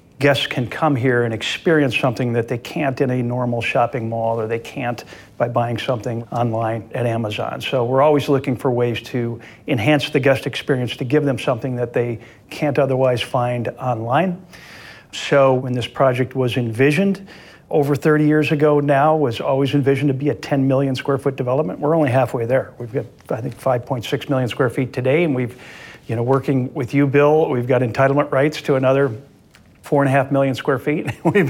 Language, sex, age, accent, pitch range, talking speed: English, male, 50-69, American, 120-145 Hz, 195 wpm